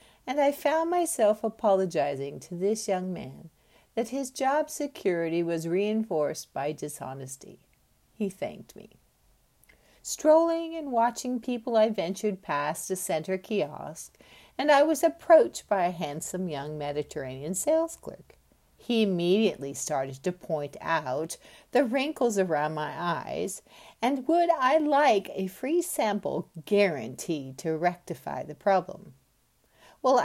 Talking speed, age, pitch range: 130 wpm, 60-79, 160-230 Hz